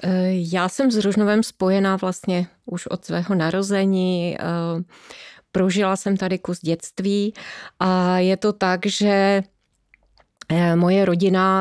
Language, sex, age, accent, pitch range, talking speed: Czech, female, 30-49, native, 155-180 Hz, 115 wpm